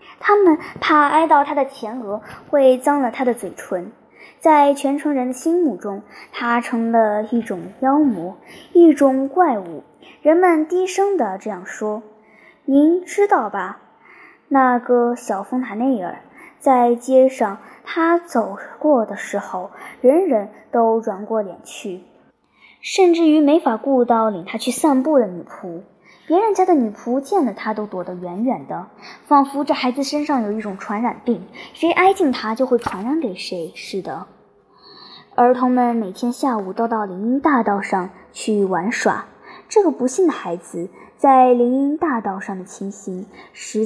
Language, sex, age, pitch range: Chinese, male, 10-29, 205-290 Hz